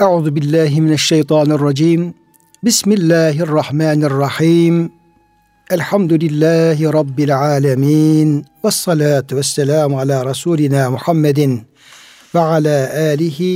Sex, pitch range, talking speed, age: male, 145-175 Hz, 90 wpm, 60-79